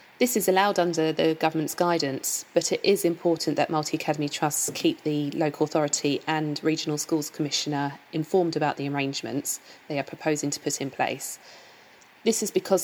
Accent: British